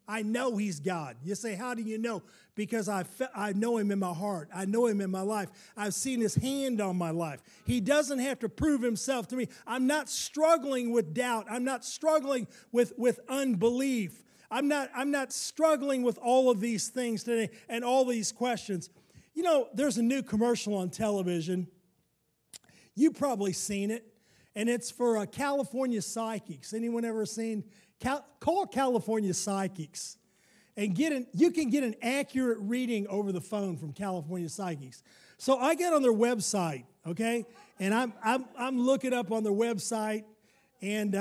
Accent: American